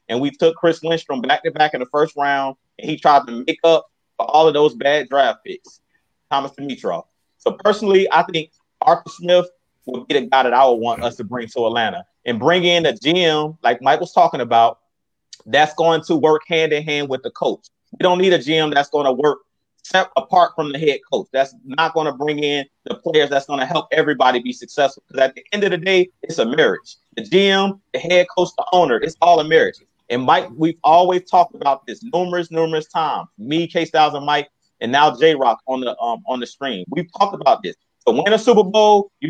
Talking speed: 220 wpm